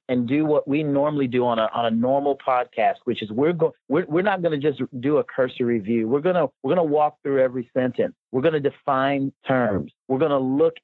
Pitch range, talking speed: 125-150 Hz, 225 wpm